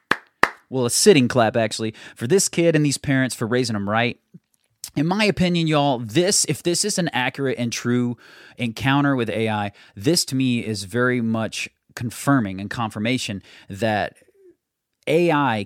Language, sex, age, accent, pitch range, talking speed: English, male, 30-49, American, 115-155 Hz, 155 wpm